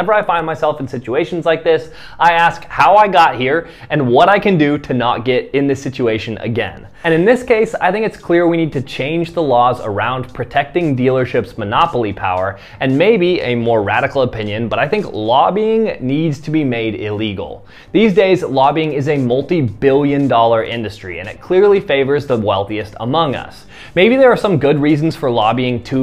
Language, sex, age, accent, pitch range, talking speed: English, male, 20-39, American, 120-165 Hz, 195 wpm